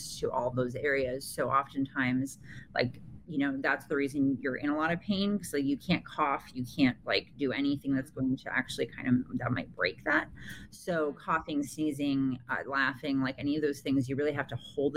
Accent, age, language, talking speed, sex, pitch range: American, 30-49, English, 210 wpm, female, 135-160 Hz